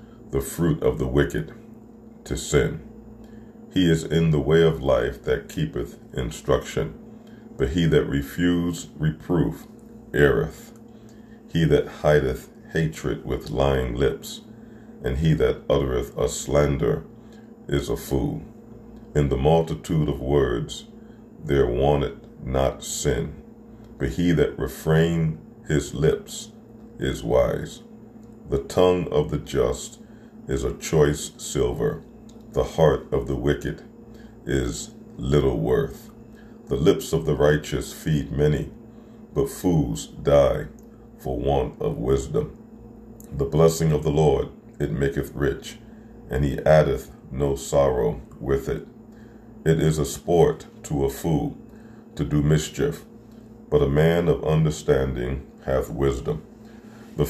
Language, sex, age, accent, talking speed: English, male, 40-59, American, 125 wpm